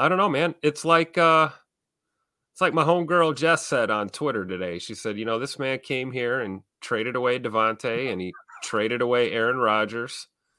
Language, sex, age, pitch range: English, male, 30-49, 95-125 Hz